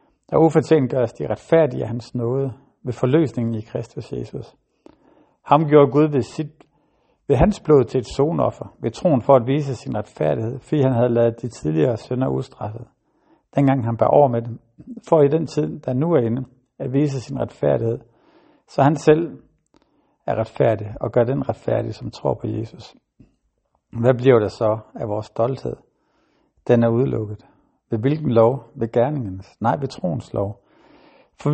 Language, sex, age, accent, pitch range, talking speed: Danish, male, 60-79, native, 115-140 Hz, 175 wpm